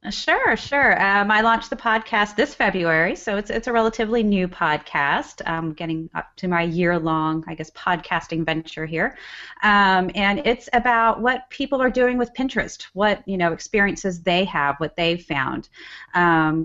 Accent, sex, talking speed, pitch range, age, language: American, female, 170 wpm, 160-205 Hz, 30-49, English